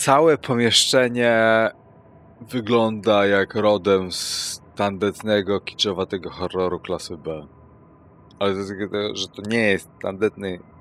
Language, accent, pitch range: Polish, native, 85-100 Hz